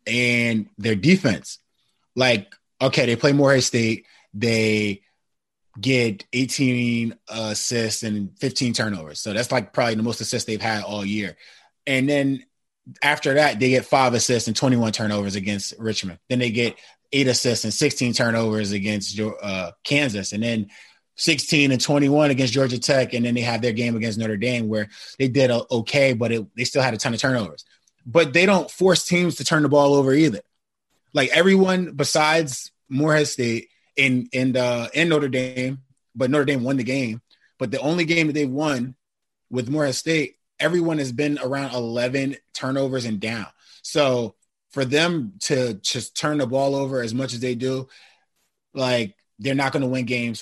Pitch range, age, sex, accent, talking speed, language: 115-140 Hz, 20-39, male, American, 175 wpm, English